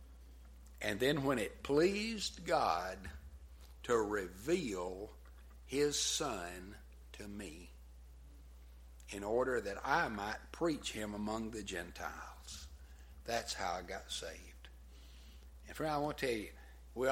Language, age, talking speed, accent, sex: English, 60-79, 125 wpm, American, male